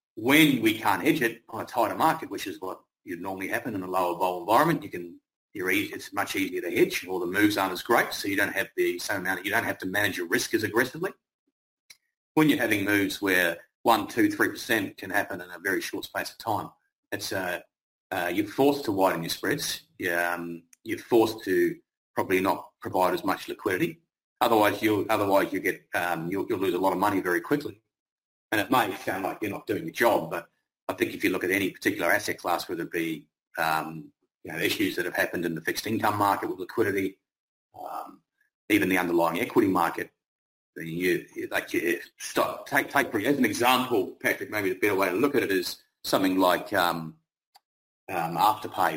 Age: 30-49